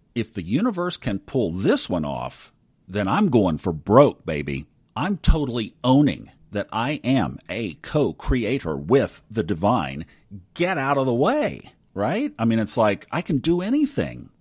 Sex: male